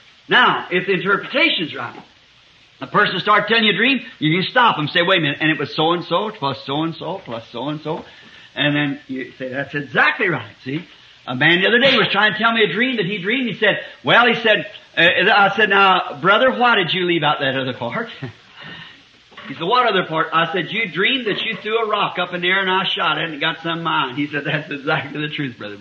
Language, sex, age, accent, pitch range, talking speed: English, male, 50-69, American, 155-250 Hz, 245 wpm